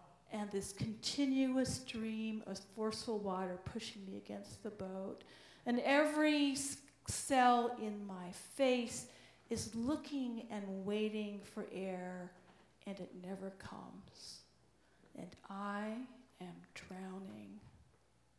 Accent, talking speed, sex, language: American, 105 wpm, female, English